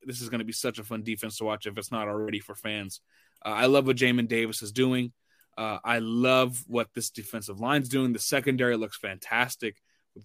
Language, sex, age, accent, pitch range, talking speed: English, male, 20-39, American, 120-150 Hz, 225 wpm